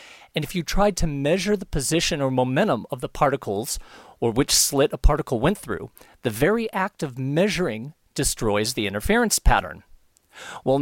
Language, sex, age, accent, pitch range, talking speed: English, male, 40-59, American, 140-205 Hz, 165 wpm